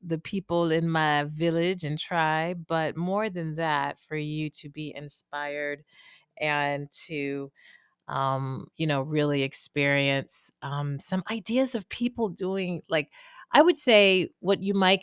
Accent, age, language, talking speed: American, 30-49, English, 145 wpm